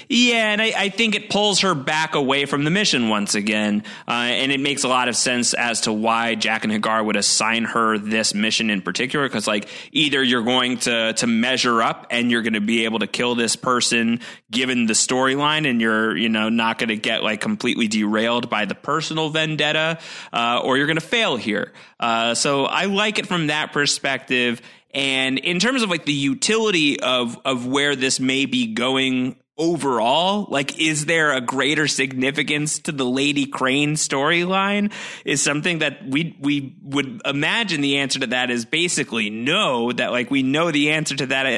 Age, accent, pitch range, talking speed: 30-49, American, 115-150 Hz, 195 wpm